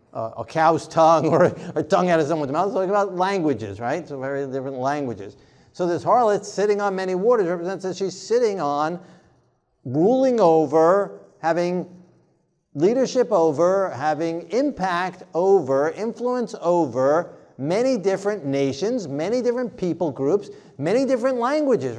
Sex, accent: male, American